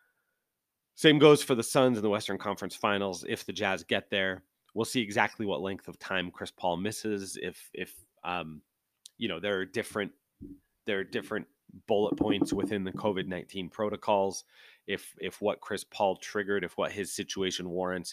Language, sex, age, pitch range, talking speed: English, male, 30-49, 90-120 Hz, 180 wpm